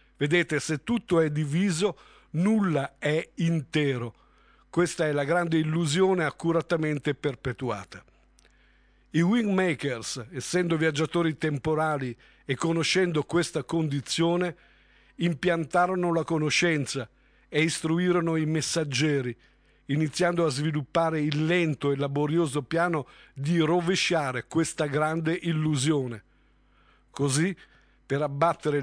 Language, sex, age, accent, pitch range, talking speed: Italian, male, 50-69, native, 140-170 Hz, 100 wpm